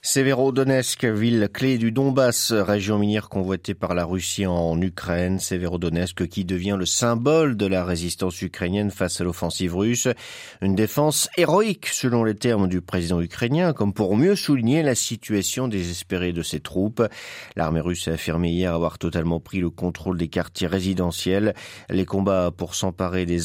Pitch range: 90-125 Hz